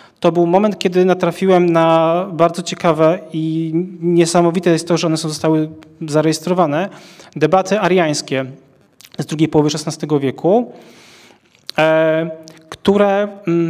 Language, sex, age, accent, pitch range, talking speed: Polish, male, 30-49, native, 160-190 Hz, 105 wpm